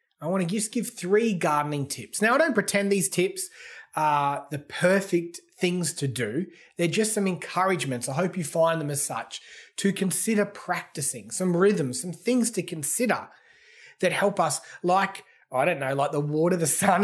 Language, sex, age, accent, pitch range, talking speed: English, male, 30-49, Australian, 145-190 Hz, 185 wpm